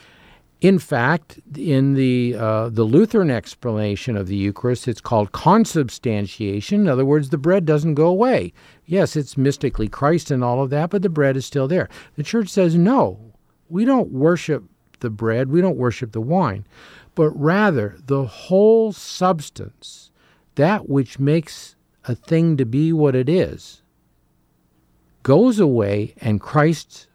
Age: 50-69